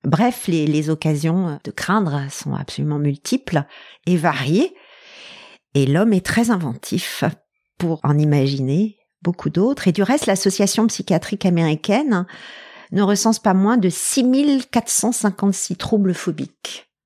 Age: 50-69